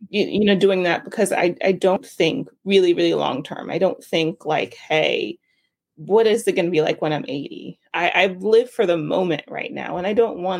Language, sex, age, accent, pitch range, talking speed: English, female, 30-49, American, 170-230 Hz, 220 wpm